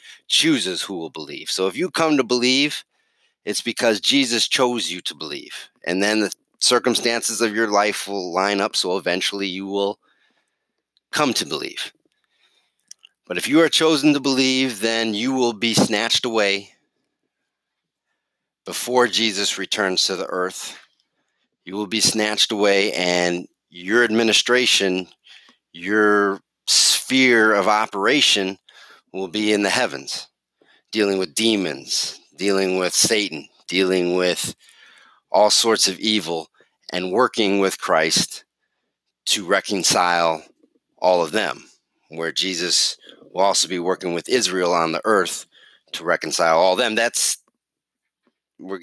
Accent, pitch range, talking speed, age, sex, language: American, 90-115 Hz, 135 wpm, 30-49, male, English